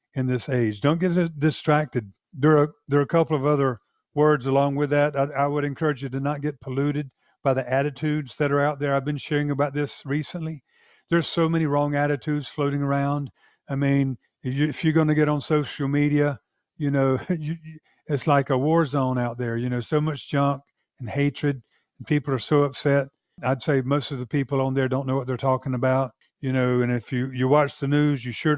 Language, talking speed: English, 225 wpm